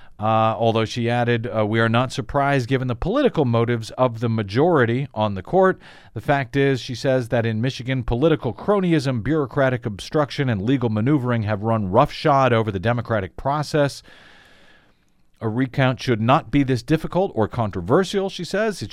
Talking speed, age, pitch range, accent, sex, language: 170 wpm, 40-59, 115-145 Hz, American, male, English